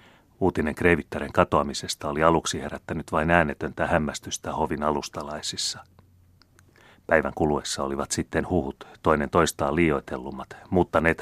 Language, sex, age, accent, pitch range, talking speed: Finnish, male, 30-49, native, 75-95 Hz, 105 wpm